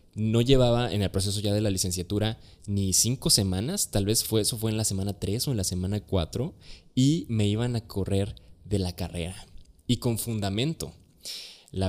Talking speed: 190 wpm